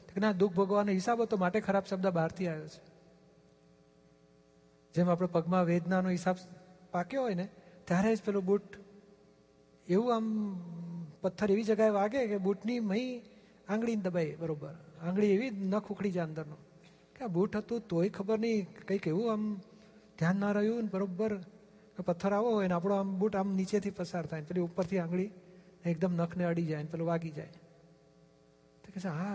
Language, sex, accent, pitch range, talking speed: Gujarati, male, native, 170-200 Hz, 160 wpm